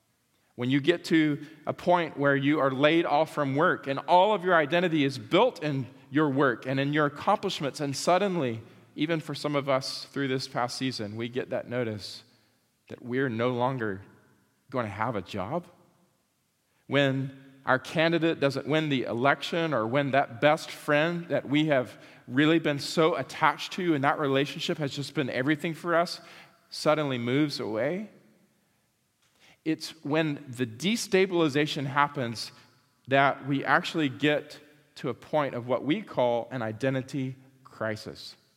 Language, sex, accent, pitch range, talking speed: English, male, American, 130-165 Hz, 160 wpm